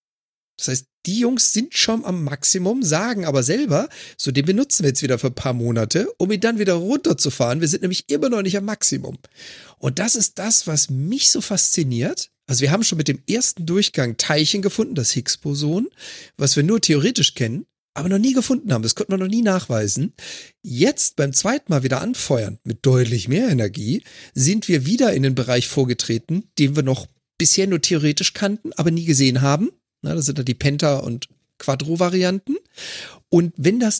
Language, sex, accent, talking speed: German, male, German, 190 wpm